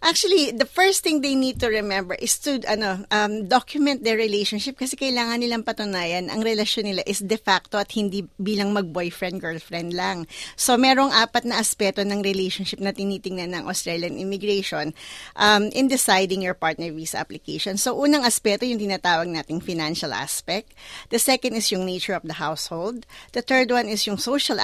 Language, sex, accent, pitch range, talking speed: Filipino, female, native, 185-240 Hz, 170 wpm